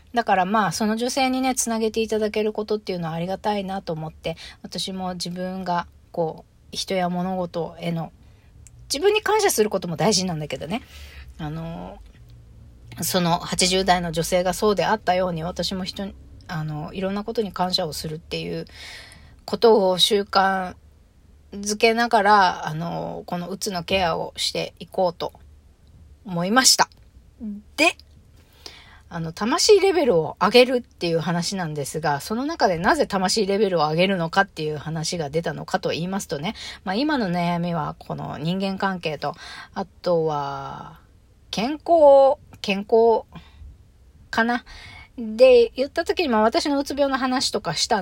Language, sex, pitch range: Japanese, female, 160-220 Hz